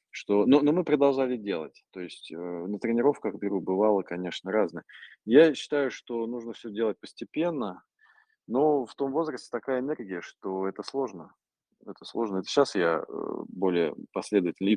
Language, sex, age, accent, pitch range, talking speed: Russian, male, 20-39, native, 90-120 Hz, 160 wpm